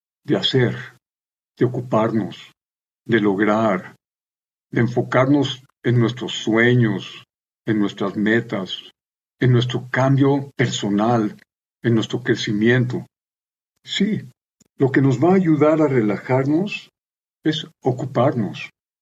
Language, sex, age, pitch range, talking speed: Spanish, male, 50-69, 120-175 Hz, 100 wpm